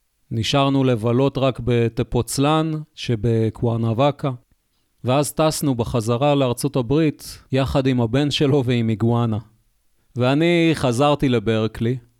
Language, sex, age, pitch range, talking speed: Hebrew, male, 40-59, 115-140 Hz, 95 wpm